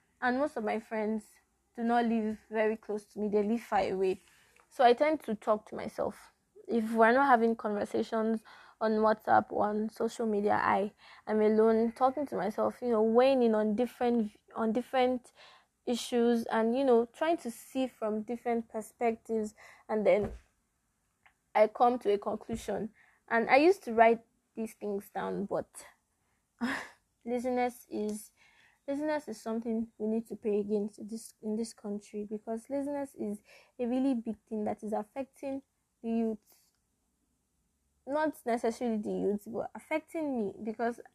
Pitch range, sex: 215-250 Hz, female